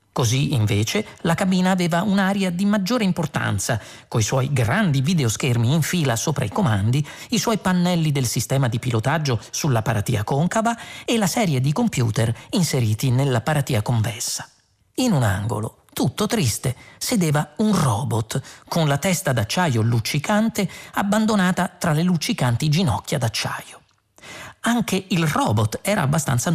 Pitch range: 120-185 Hz